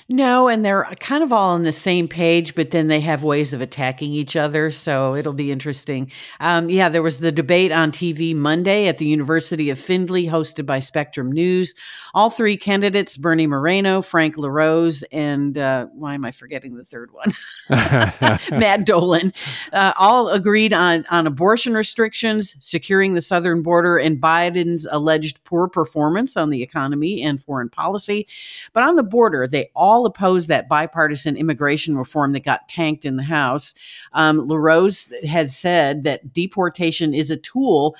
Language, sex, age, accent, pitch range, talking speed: English, female, 50-69, American, 150-190 Hz, 170 wpm